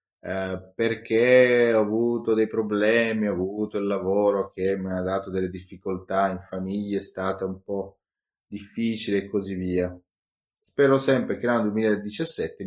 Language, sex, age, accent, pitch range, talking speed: Italian, male, 30-49, native, 95-110 Hz, 145 wpm